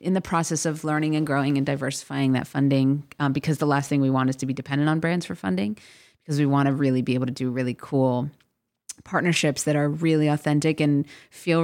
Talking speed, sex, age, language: 220 wpm, female, 30-49, English